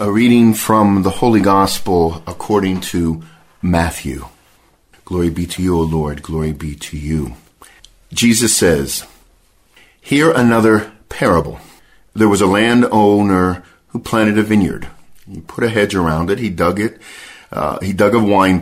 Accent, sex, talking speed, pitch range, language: American, male, 150 wpm, 85-110 Hz, Ukrainian